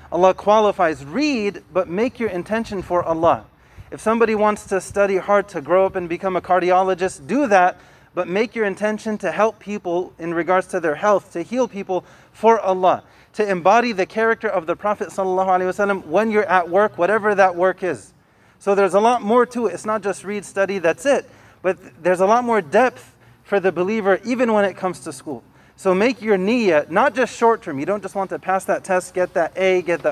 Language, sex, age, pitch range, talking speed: English, male, 30-49, 180-215 Hz, 210 wpm